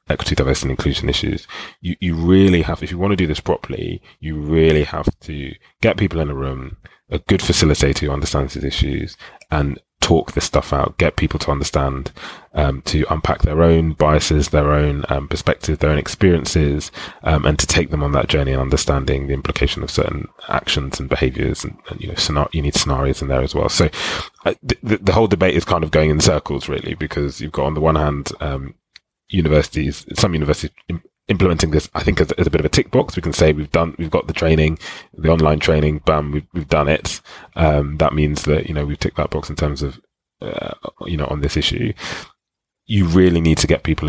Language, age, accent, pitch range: English, 30-49, British, 70-85 Hz